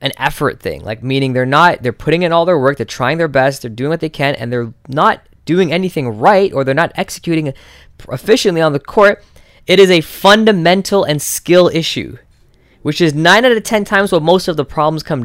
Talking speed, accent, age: 220 wpm, American, 10-29